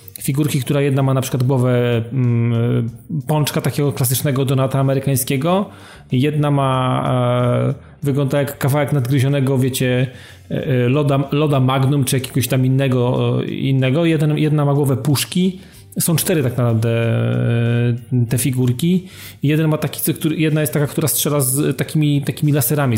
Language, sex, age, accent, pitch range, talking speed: Polish, male, 30-49, native, 125-150 Hz, 125 wpm